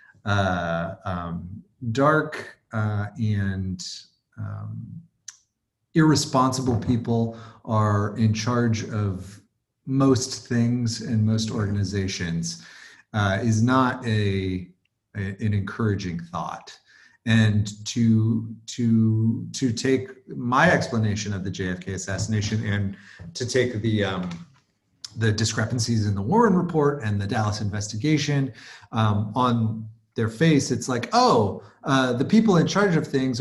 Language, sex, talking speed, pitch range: English, male, 115 wpm, 105-125 Hz